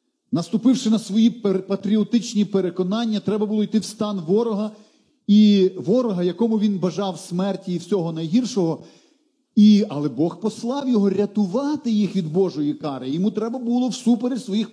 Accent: native